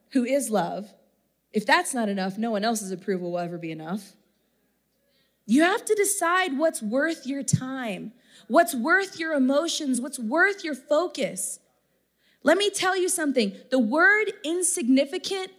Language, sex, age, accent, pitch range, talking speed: English, female, 20-39, American, 215-295 Hz, 150 wpm